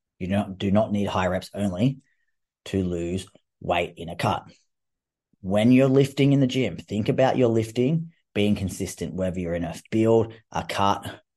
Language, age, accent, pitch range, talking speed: English, 30-49, Australian, 95-120 Hz, 180 wpm